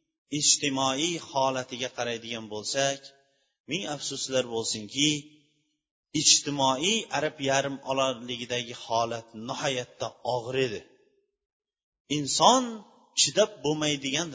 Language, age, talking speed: Bulgarian, 30-49, 80 wpm